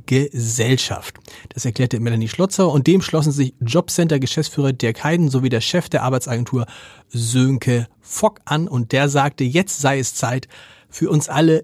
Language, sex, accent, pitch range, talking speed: German, male, German, 120-160 Hz, 155 wpm